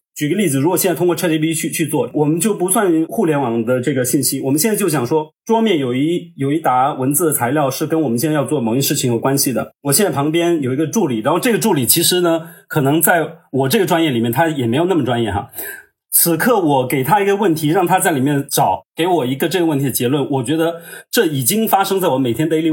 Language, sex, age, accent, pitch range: Chinese, male, 30-49, native, 135-175 Hz